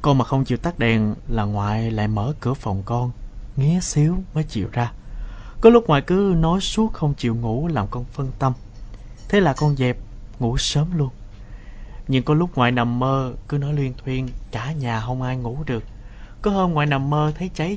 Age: 20-39